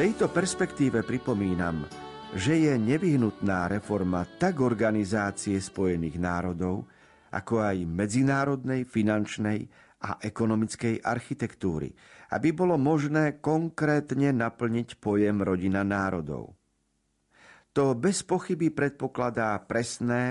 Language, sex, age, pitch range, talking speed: Slovak, male, 50-69, 100-135 Hz, 95 wpm